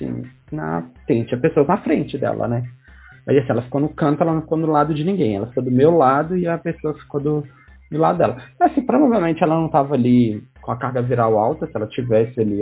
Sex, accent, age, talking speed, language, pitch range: male, Brazilian, 20-39, 235 wpm, English, 120-160 Hz